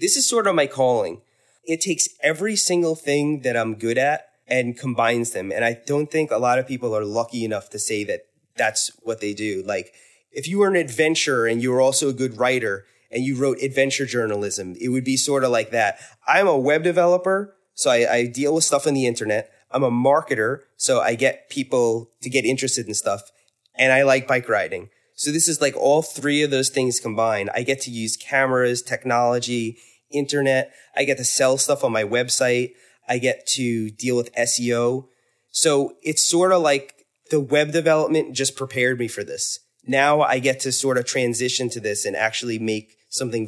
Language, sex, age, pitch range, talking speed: English, male, 20-39, 115-145 Hz, 205 wpm